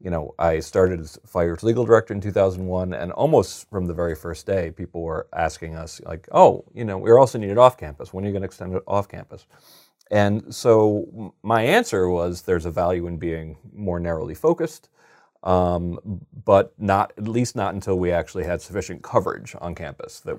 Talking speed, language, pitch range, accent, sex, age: 195 wpm, English, 85-95 Hz, American, male, 30-49